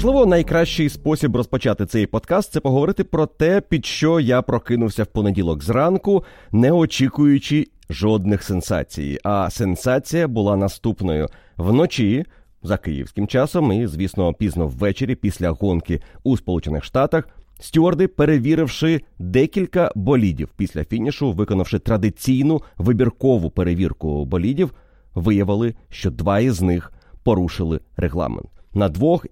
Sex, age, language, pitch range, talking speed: male, 30-49, Ukrainian, 95-130 Hz, 120 wpm